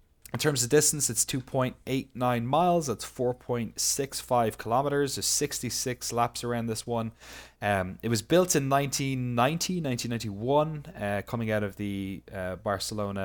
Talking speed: 135 wpm